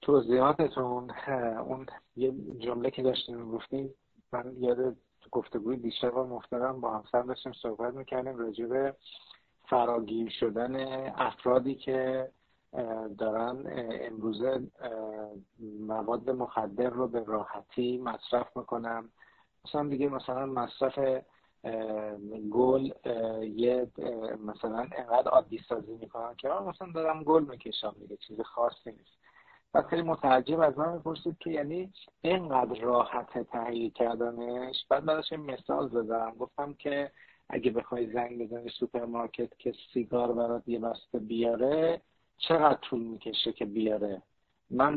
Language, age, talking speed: Persian, 50-69, 120 wpm